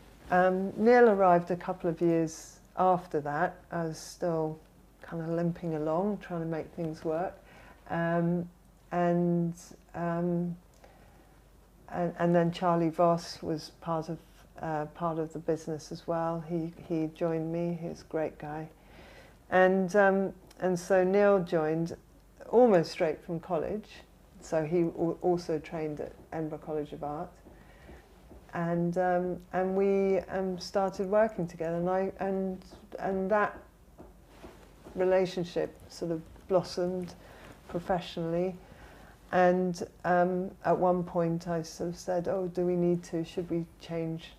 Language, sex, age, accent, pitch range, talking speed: English, female, 50-69, British, 160-185 Hz, 140 wpm